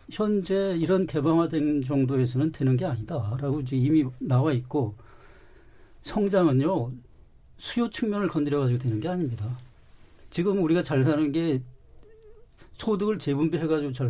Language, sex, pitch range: Korean, male, 135-175 Hz